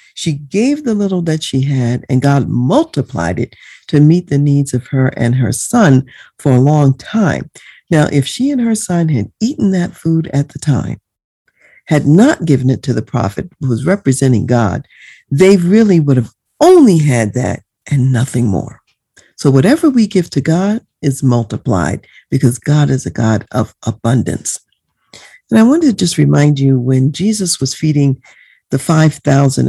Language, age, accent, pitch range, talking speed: English, 50-69, American, 135-195 Hz, 175 wpm